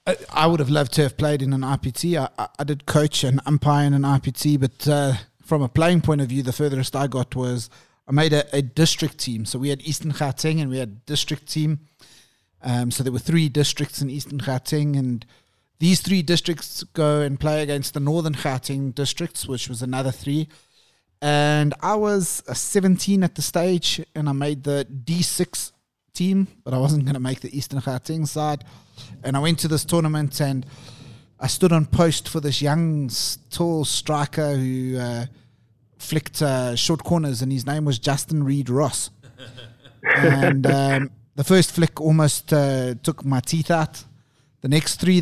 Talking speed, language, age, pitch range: 185 wpm, English, 30-49, 130-155 Hz